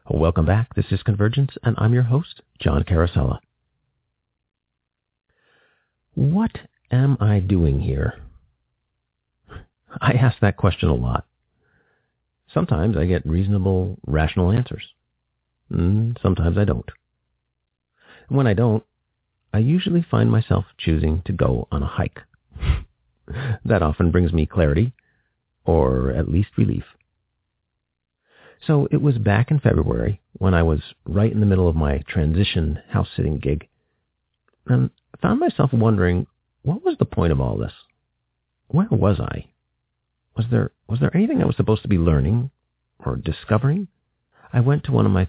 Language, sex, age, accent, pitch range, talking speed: English, male, 50-69, American, 80-115 Hz, 140 wpm